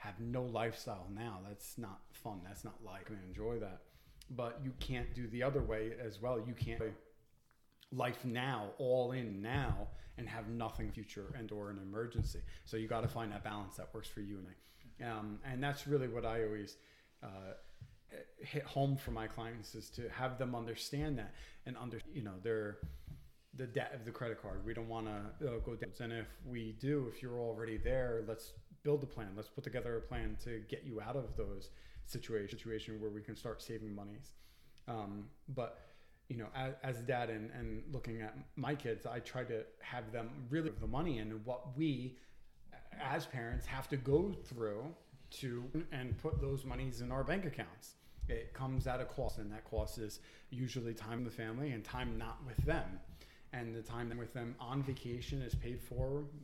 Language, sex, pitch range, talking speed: English, male, 110-130 Hz, 200 wpm